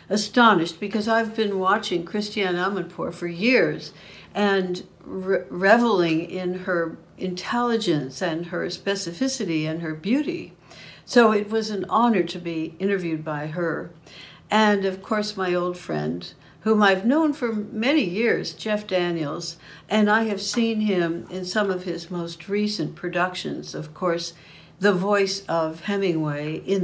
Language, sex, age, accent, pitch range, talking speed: English, female, 60-79, American, 170-210 Hz, 140 wpm